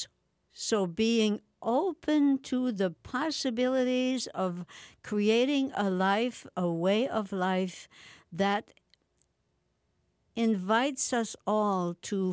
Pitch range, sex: 175-225 Hz, female